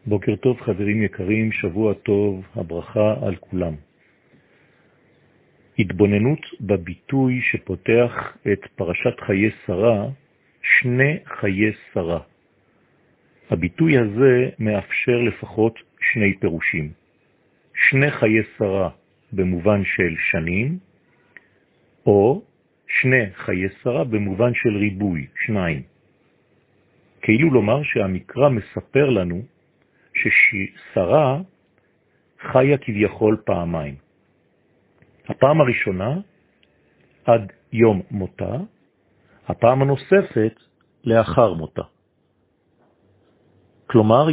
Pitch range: 95-125 Hz